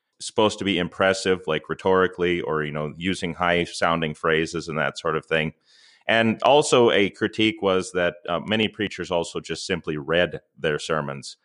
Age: 30-49